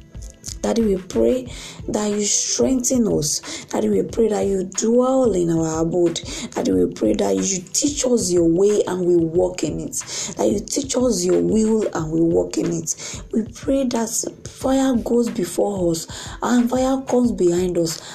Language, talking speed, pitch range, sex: English, 175 wpm, 155-225 Hz, female